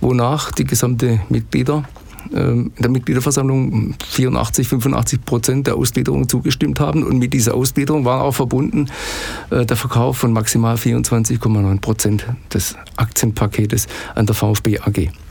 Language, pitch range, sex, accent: German, 110-135 Hz, male, German